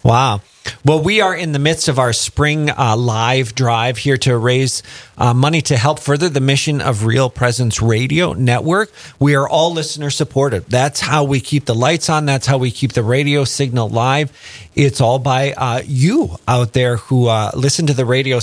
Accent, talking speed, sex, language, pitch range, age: American, 200 wpm, male, English, 125-145 Hz, 40-59